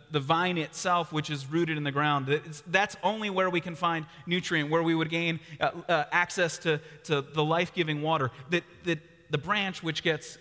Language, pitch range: English, 135-170 Hz